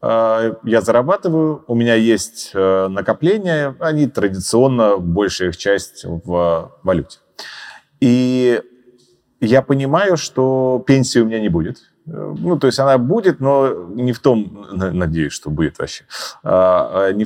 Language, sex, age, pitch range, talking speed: Russian, male, 30-49, 95-140 Hz, 125 wpm